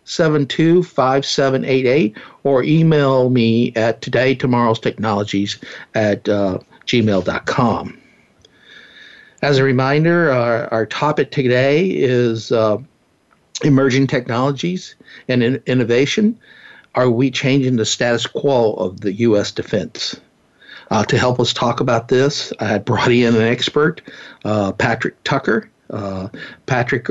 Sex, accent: male, American